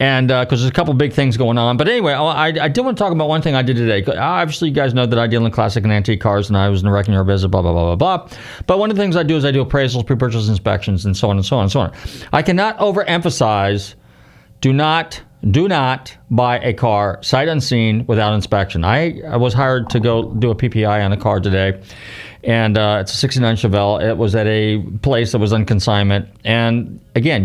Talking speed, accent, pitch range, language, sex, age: 250 wpm, American, 105-145 Hz, English, male, 40-59